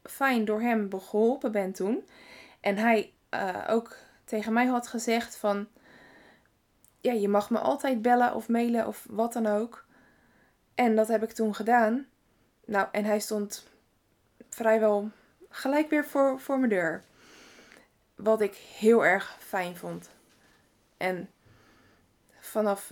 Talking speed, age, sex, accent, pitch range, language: 135 wpm, 20-39, female, Dutch, 205-245 Hz, Dutch